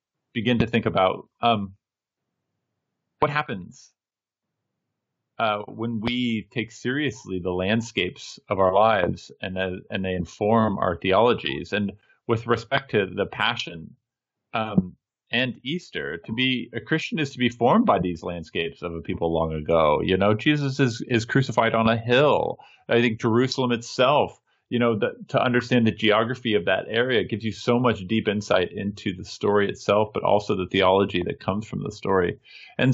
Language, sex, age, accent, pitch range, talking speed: English, male, 30-49, American, 105-130 Hz, 170 wpm